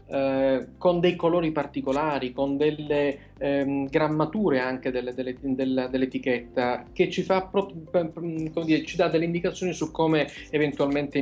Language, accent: Italian, native